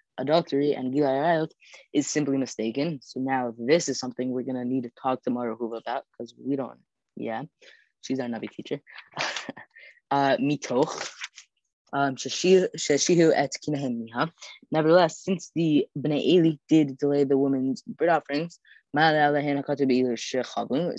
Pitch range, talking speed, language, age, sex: 130-155 Hz, 120 wpm, English, 20-39, female